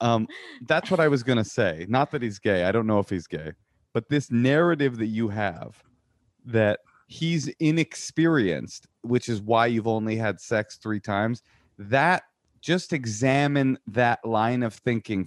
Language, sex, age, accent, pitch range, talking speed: English, male, 30-49, American, 105-135 Hz, 170 wpm